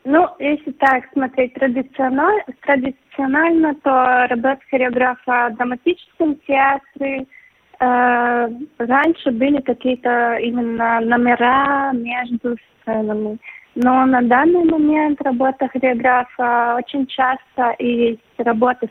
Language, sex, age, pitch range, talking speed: Russian, female, 20-39, 230-270 Hz, 95 wpm